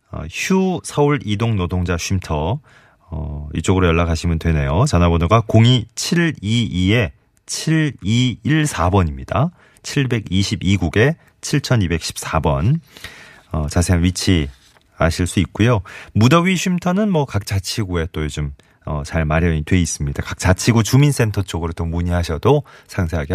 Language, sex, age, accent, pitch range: Korean, male, 30-49, native, 85-140 Hz